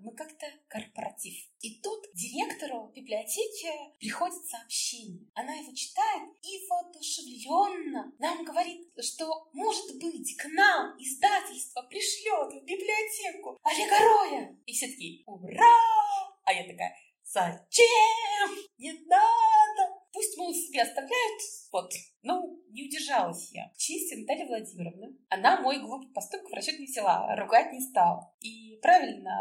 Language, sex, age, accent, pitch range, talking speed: Russian, female, 20-39, native, 235-365 Hz, 120 wpm